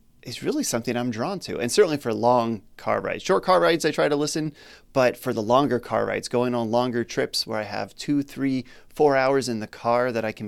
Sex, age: male, 30-49